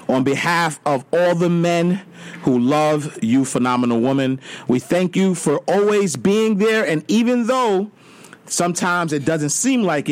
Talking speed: 155 wpm